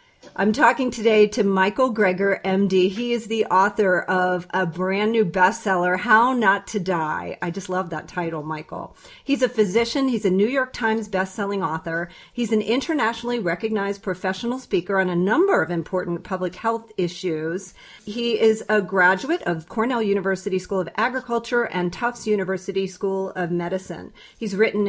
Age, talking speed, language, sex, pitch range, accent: 40-59, 165 wpm, English, female, 180-220 Hz, American